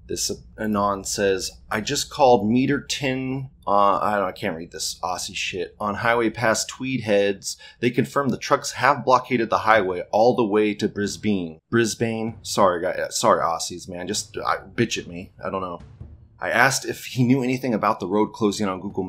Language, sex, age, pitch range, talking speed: English, male, 30-49, 95-120 Hz, 190 wpm